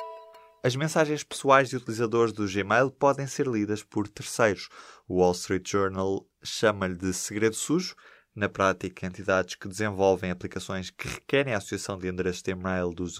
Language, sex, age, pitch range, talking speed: Portuguese, male, 20-39, 95-115 Hz, 160 wpm